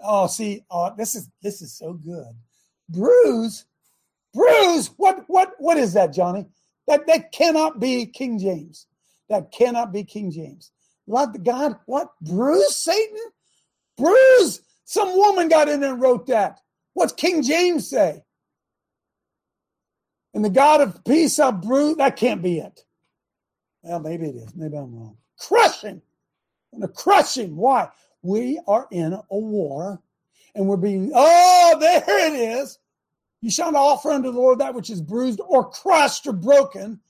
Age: 50-69